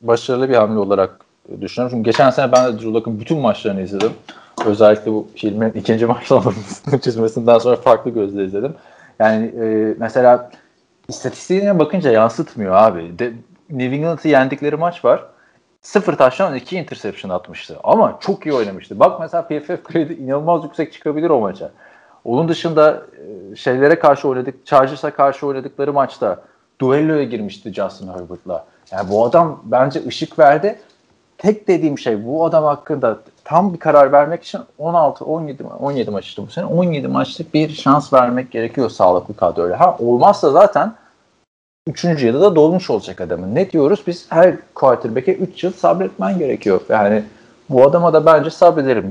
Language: Turkish